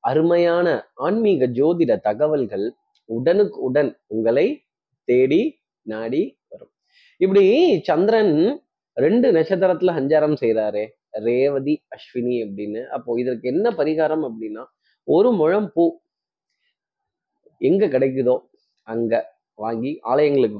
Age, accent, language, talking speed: 20-39, native, Tamil, 85 wpm